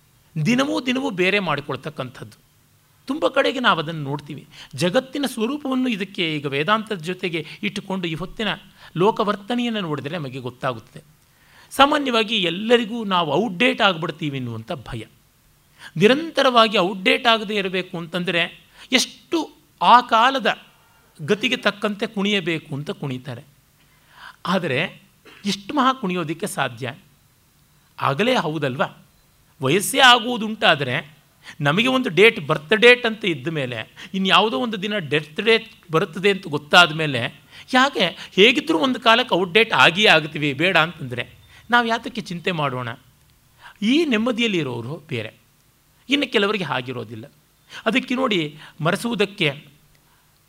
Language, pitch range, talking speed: Kannada, 145-225 Hz, 110 wpm